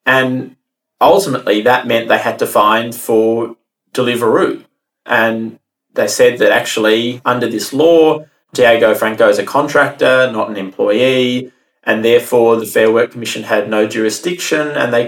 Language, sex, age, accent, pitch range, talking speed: English, male, 30-49, Australian, 115-150 Hz, 145 wpm